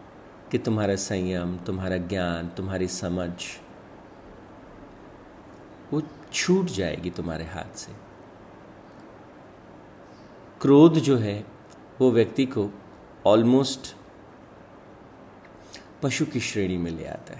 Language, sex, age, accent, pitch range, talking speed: Hindi, male, 50-69, native, 95-130 Hz, 90 wpm